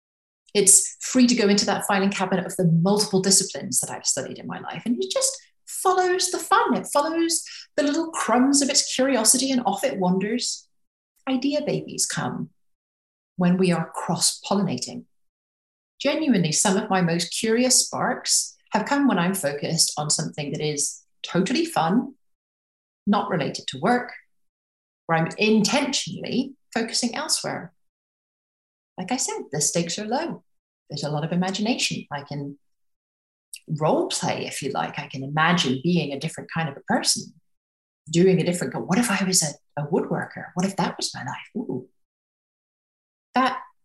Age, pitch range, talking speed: 30-49, 165-250 Hz, 160 wpm